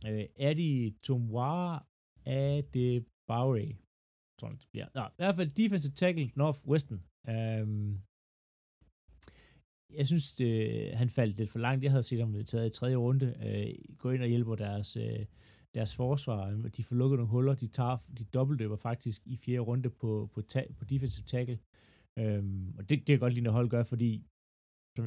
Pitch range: 105-130 Hz